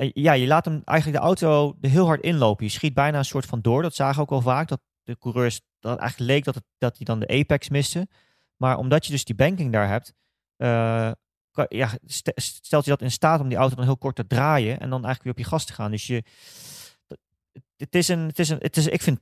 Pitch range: 115-140 Hz